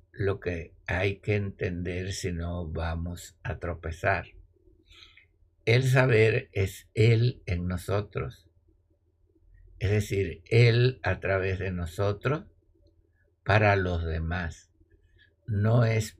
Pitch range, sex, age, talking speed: 85-100 Hz, male, 60-79, 105 wpm